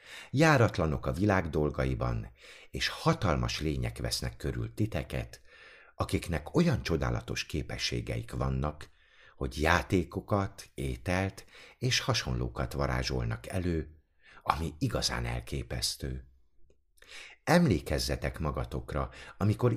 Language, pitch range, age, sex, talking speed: Hungarian, 65-105 Hz, 50-69, male, 85 wpm